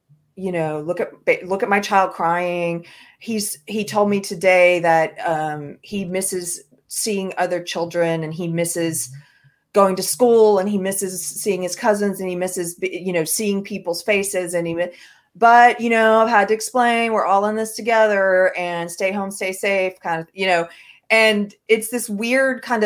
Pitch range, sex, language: 175-220 Hz, female, English